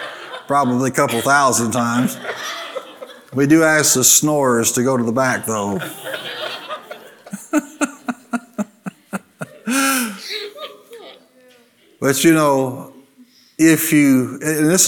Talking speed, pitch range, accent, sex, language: 95 wpm, 110-135 Hz, American, male, English